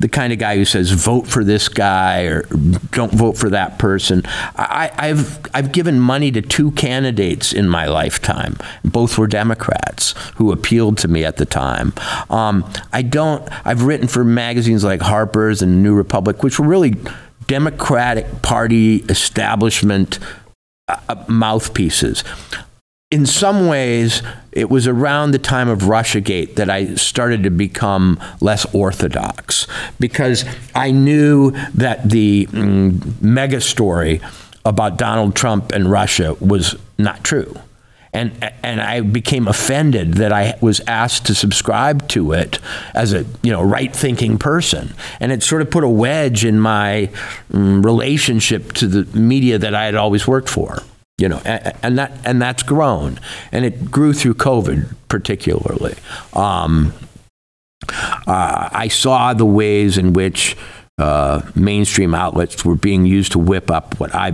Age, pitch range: 50-69, 100-125 Hz